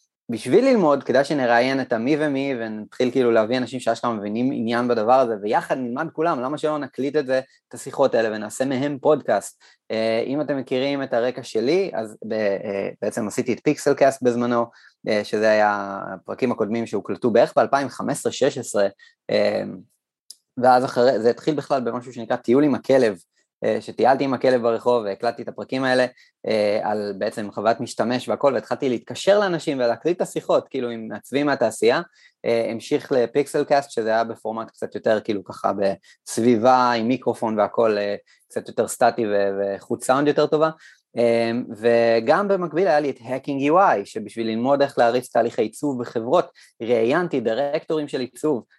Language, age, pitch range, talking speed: Hebrew, 20-39, 115-140 Hz, 150 wpm